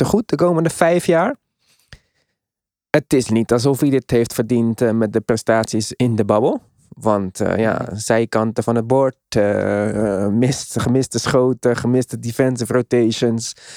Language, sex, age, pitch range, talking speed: Dutch, male, 20-39, 105-125 Hz, 145 wpm